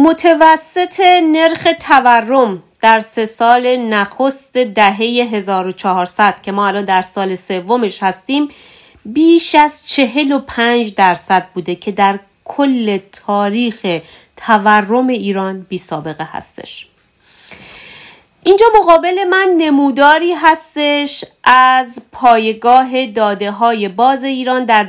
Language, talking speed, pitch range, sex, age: Persian, 100 wpm, 195-260 Hz, female, 40-59